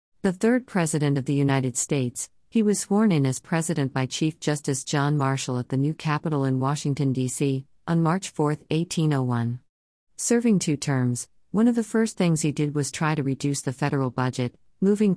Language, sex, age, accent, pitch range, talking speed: English, female, 50-69, American, 130-160 Hz, 185 wpm